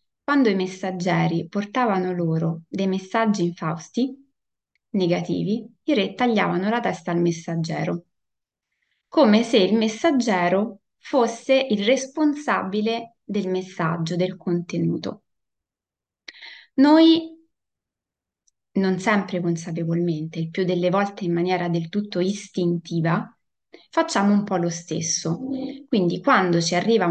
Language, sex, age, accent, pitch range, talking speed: Italian, female, 20-39, native, 170-210 Hz, 110 wpm